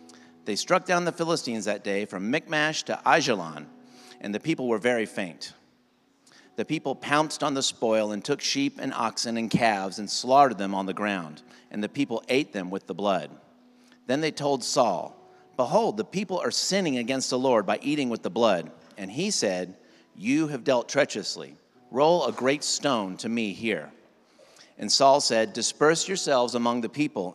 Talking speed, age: 180 wpm, 50-69